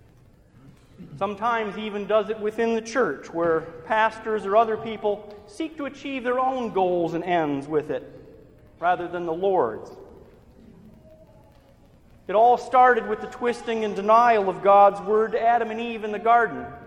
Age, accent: 40-59, American